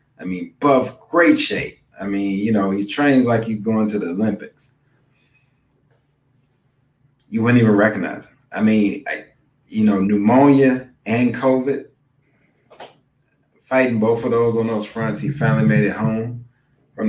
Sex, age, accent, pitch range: male, 30-49, American, 105-135 Hz